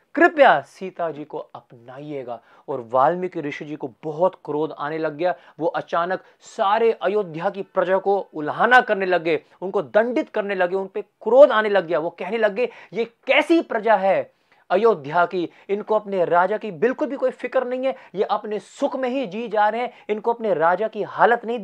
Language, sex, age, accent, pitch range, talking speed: Hindi, male, 30-49, native, 170-235 Hz, 190 wpm